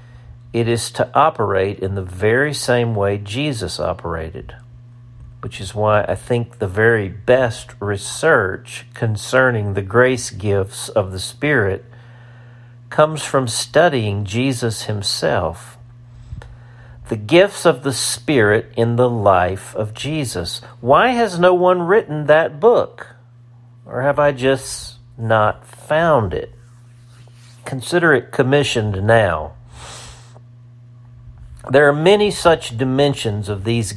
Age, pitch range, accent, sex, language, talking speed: 50-69, 110-125 Hz, American, male, English, 120 wpm